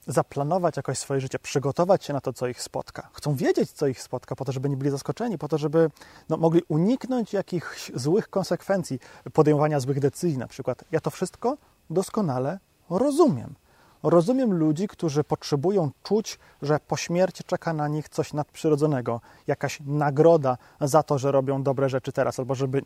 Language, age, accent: Polish, 30-49, native